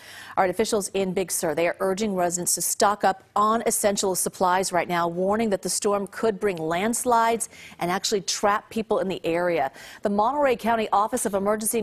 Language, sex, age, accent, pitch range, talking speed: English, female, 40-59, American, 185-225 Hz, 185 wpm